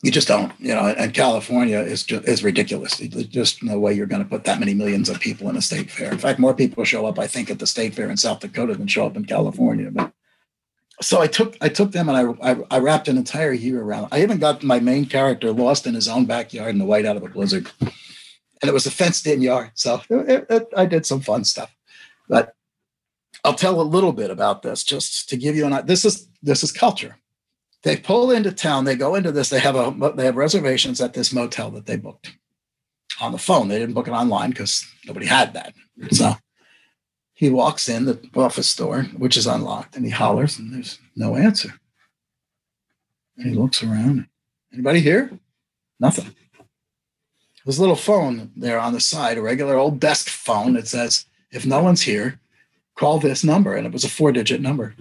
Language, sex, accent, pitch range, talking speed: English, male, American, 125-195 Hz, 220 wpm